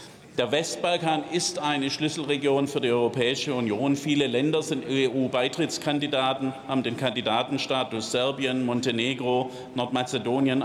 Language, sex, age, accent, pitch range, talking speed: German, male, 50-69, German, 125-155 Hz, 105 wpm